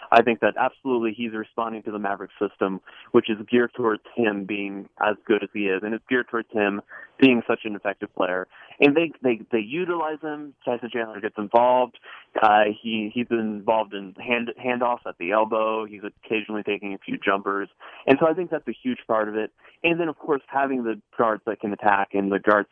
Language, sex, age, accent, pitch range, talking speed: English, male, 20-39, American, 100-120 Hz, 215 wpm